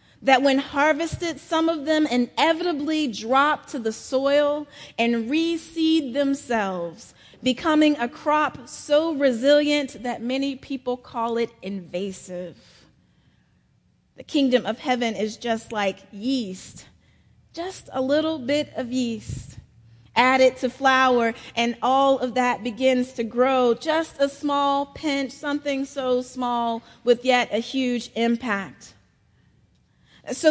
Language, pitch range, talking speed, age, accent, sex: English, 240-305 Hz, 125 wpm, 30-49, American, female